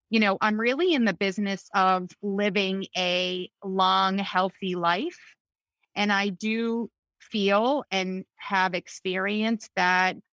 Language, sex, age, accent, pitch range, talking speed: English, female, 30-49, American, 175-205 Hz, 120 wpm